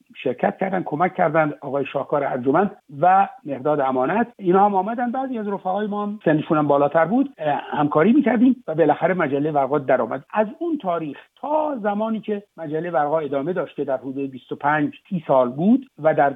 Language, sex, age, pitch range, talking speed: Persian, male, 60-79, 145-195 Hz, 165 wpm